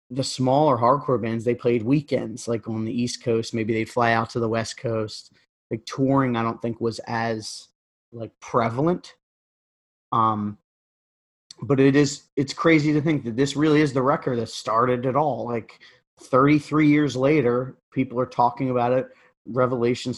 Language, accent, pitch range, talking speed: English, American, 115-135 Hz, 170 wpm